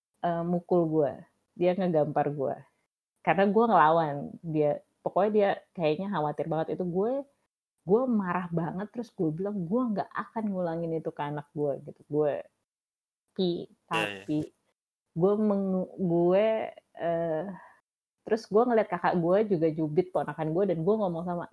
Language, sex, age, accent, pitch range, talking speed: Indonesian, female, 30-49, native, 165-210 Hz, 140 wpm